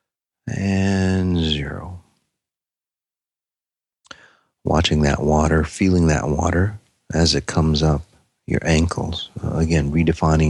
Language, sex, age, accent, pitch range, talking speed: English, male, 40-59, American, 75-90 Hz, 95 wpm